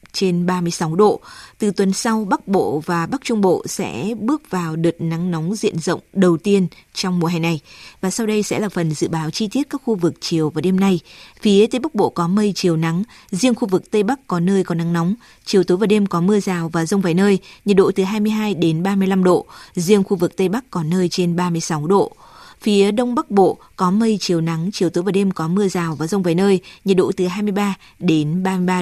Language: Vietnamese